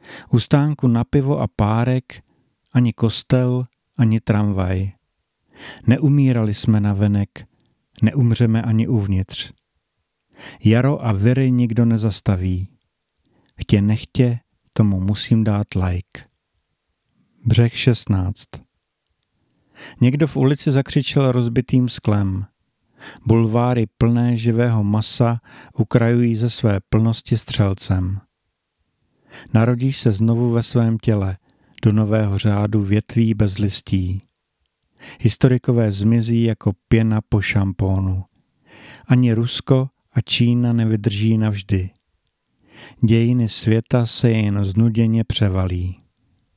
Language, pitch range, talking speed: Czech, 105-125 Hz, 95 wpm